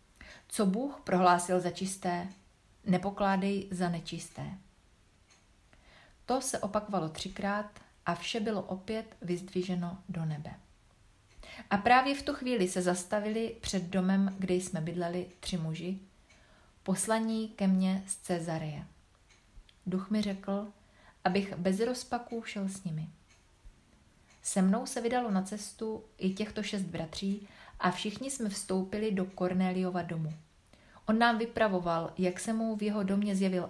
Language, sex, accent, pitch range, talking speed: Czech, female, native, 175-215 Hz, 130 wpm